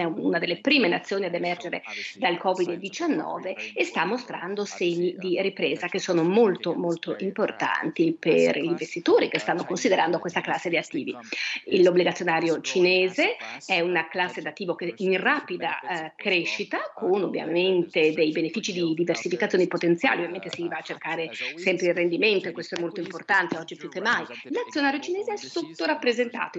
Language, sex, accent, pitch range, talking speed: English, female, Italian, 170-200 Hz, 150 wpm